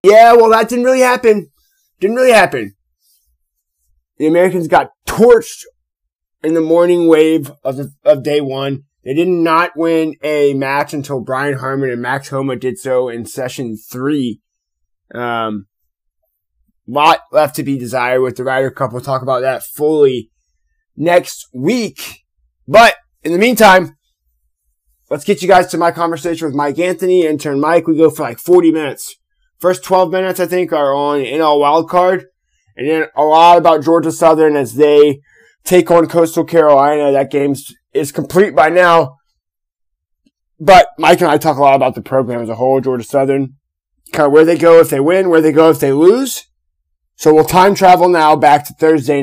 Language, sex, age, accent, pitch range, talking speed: English, male, 20-39, American, 130-165 Hz, 175 wpm